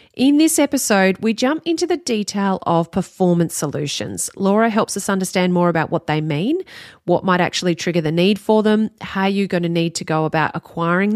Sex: female